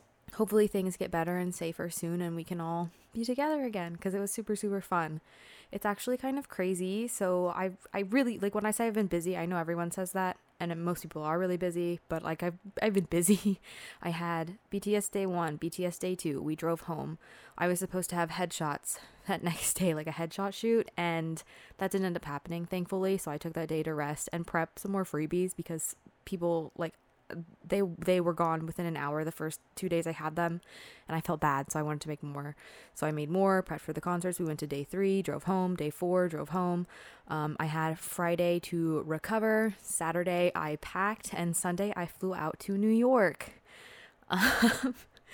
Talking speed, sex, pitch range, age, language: 210 wpm, female, 165-200 Hz, 20-39, English